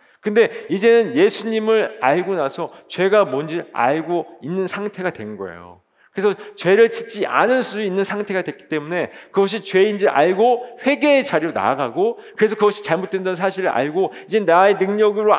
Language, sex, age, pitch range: Korean, male, 40-59, 145-220 Hz